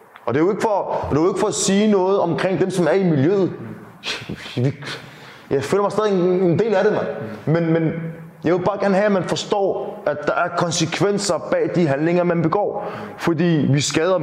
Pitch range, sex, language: 140-185 Hz, male, Danish